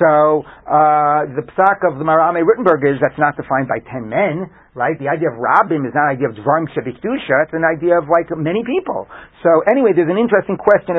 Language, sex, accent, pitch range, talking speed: English, male, American, 150-185 Hz, 220 wpm